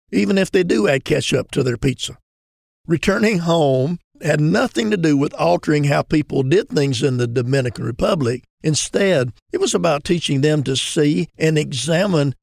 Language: English